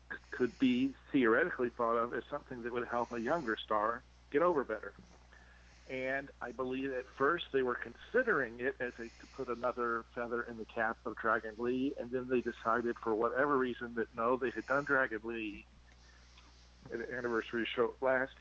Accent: American